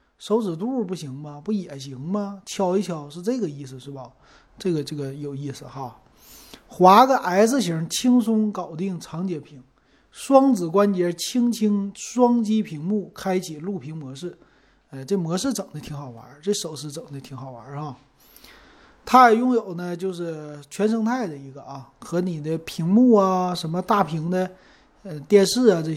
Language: Chinese